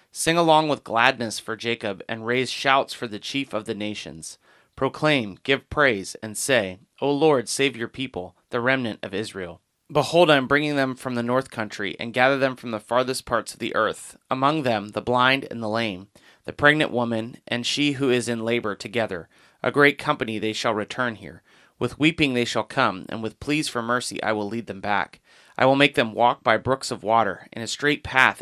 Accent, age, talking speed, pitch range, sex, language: American, 30-49, 210 wpm, 110-140 Hz, male, English